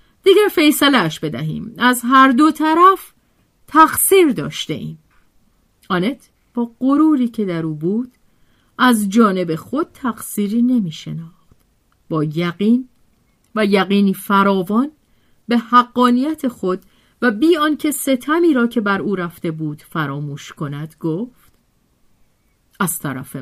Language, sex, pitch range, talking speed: Persian, female, 165-260 Hz, 115 wpm